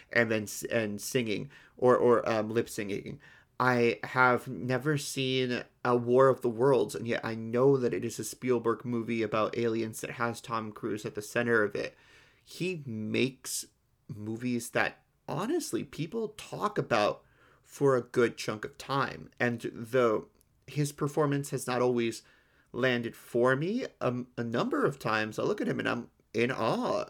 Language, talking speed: English, 170 wpm